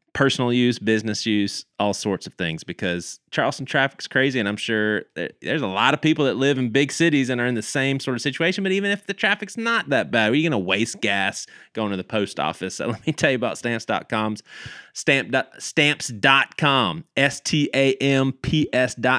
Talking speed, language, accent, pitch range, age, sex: 200 wpm, English, American, 100-140 Hz, 30-49, male